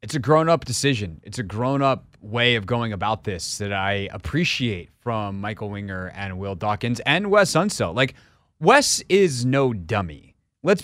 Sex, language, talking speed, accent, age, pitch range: male, English, 165 wpm, American, 30-49, 115-160 Hz